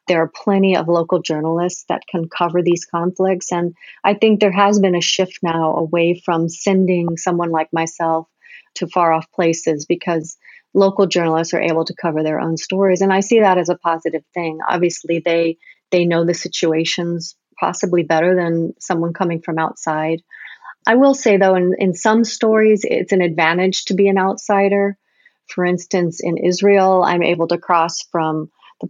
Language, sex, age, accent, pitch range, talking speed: English, female, 40-59, American, 165-195 Hz, 180 wpm